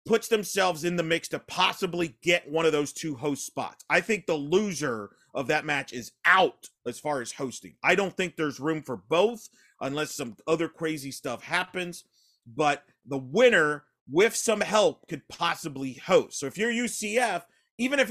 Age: 30-49